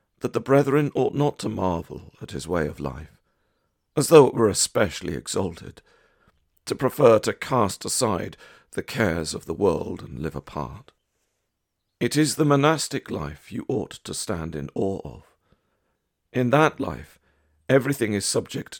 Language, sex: English, male